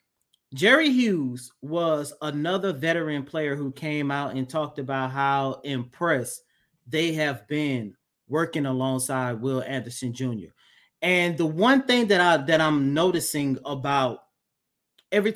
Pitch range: 140-180 Hz